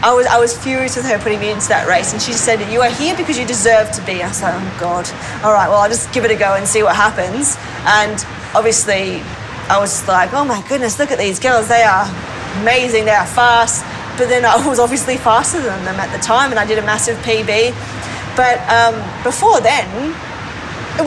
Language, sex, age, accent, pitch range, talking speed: English, female, 20-39, Australian, 205-240 Hz, 230 wpm